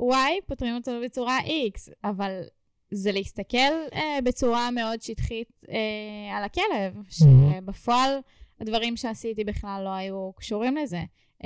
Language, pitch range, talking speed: Hebrew, 195-250 Hz, 130 wpm